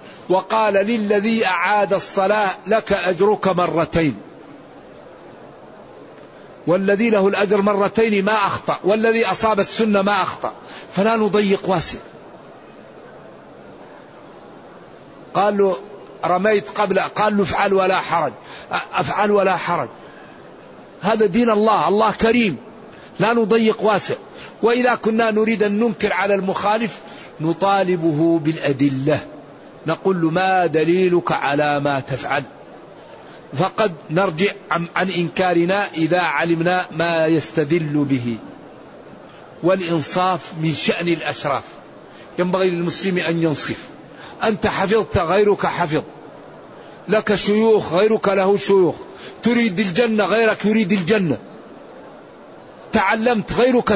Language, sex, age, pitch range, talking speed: Arabic, male, 60-79, 170-215 Hz, 100 wpm